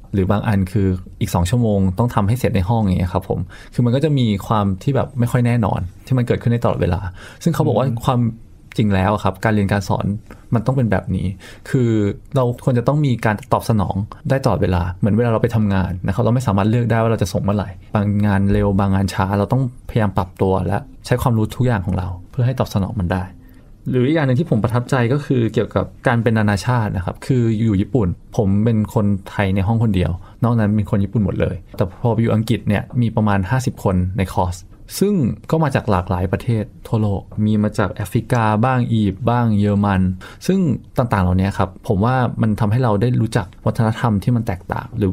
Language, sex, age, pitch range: Thai, male, 20-39, 100-120 Hz